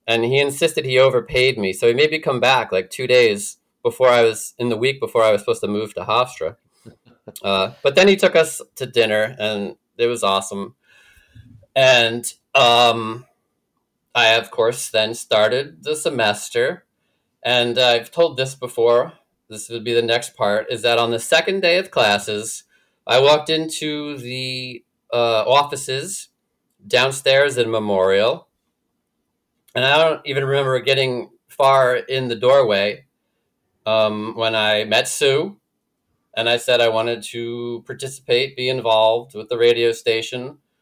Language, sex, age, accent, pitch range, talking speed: English, male, 30-49, American, 115-140 Hz, 155 wpm